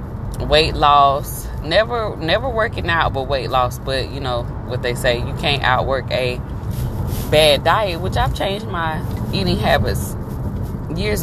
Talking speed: 150 wpm